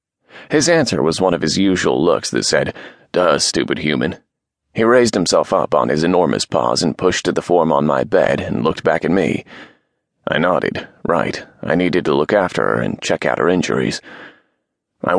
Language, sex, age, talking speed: English, male, 30-49, 195 wpm